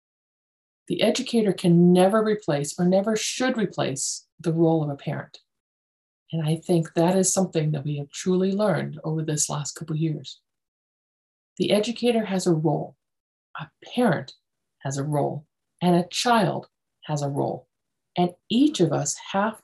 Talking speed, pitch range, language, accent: 160 wpm, 155-210 Hz, English, American